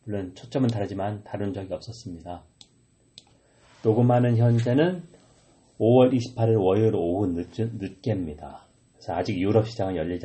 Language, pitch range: Korean, 100-125 Hz